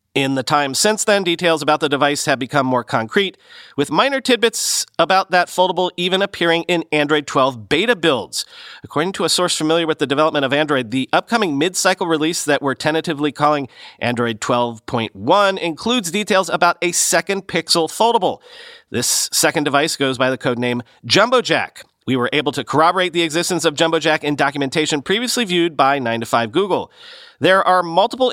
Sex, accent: male, American